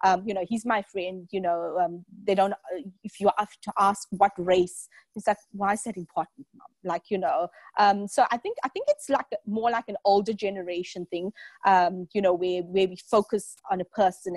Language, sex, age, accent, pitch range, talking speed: English, female, 30-49, South African, 185-230 Hz, 220 wpm